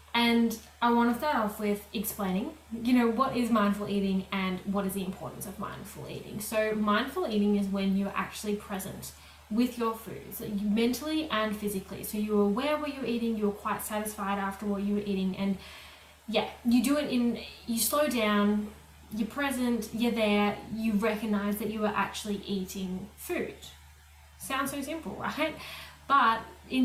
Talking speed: 175 wpm